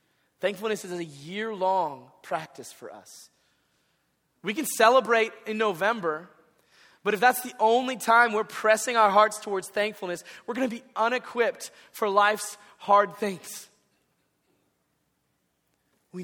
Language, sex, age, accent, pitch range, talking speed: English, male, 30-49, American, 165-225 Hz, 120 wpm